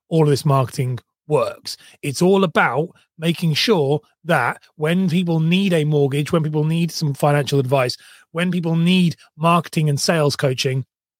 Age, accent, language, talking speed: 30-49, British, English, 155 wpm